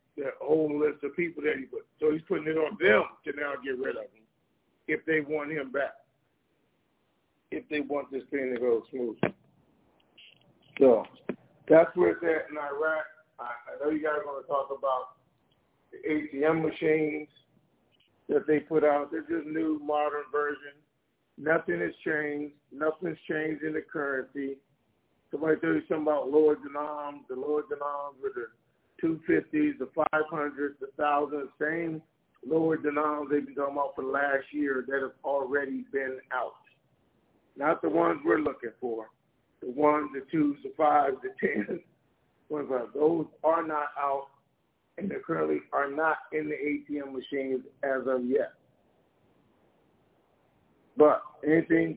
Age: 50-69